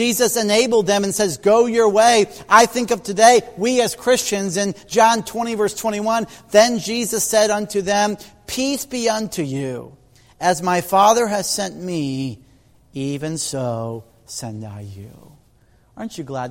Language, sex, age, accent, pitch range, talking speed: English, male, 40-59, American, 130-180 Hz, 155 wpm